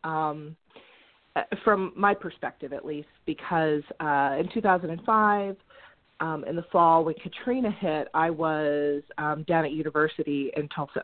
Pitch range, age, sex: 150-180 Hz, 30-49, female